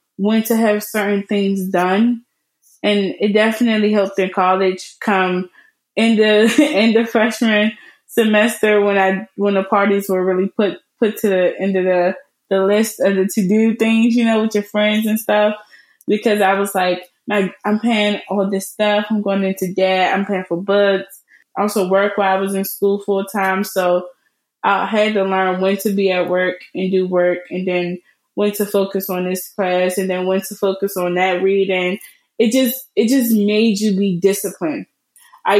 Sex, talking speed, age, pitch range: female, 190 wpm, 20-39, 185-215 Hz